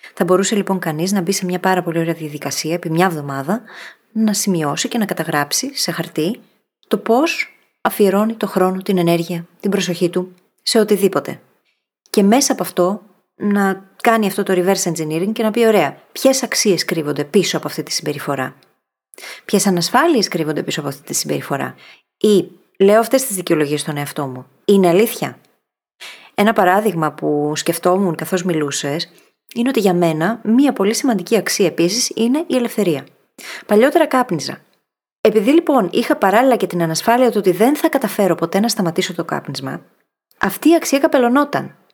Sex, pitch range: female, 170-235 Hz